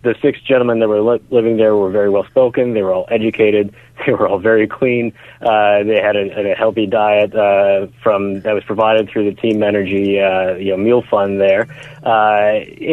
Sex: male